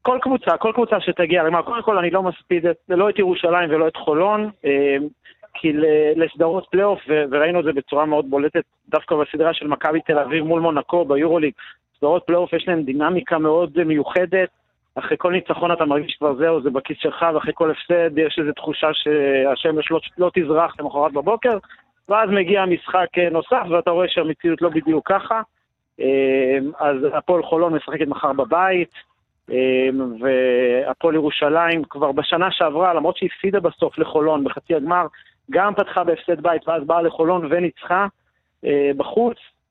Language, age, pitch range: Hebrew, 40-59, 150-180 Hz